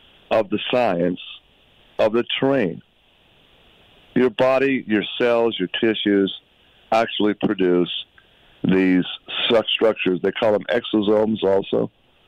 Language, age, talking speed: English, 60-79, 105 wpm